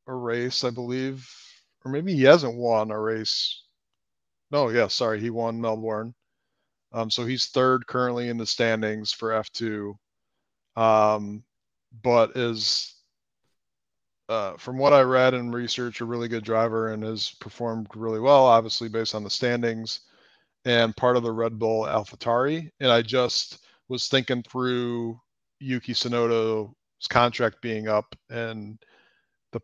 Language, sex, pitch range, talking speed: English, male, 110-125 Hz, 145 wpm